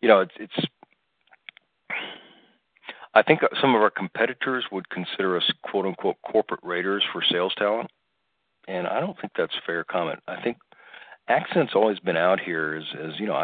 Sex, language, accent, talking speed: male, English, American, 165 wpm